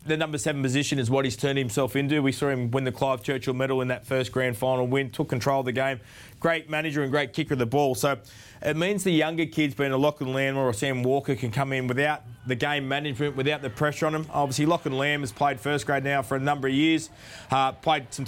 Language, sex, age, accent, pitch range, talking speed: English, male, 20-39, Australian, 130-155 Hz, 265 wpm